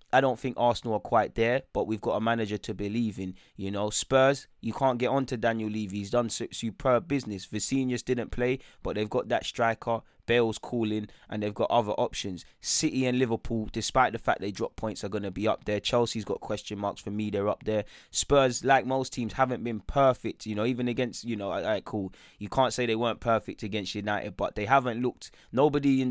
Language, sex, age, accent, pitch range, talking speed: English, male, 20-39, British, 110-130 Hz, 225 wpm